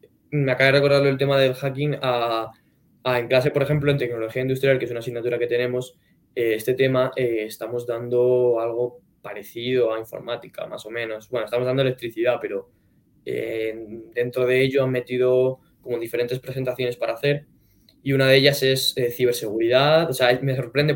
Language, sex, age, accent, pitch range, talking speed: Spanish, male, 10-29, Spanish, 120-135 Hz, 180 wpm